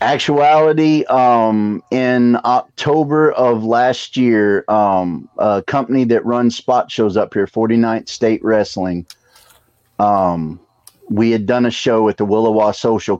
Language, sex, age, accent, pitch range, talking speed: English, male, 30-49, American, 100-115 Hz, 130 wpm